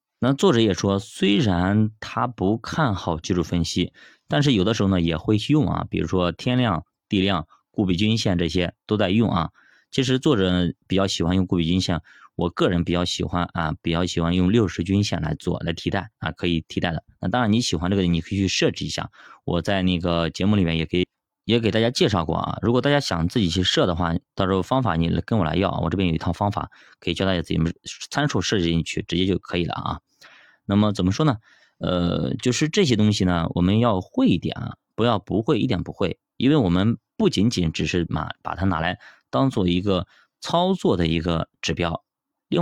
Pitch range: 85-110 Hz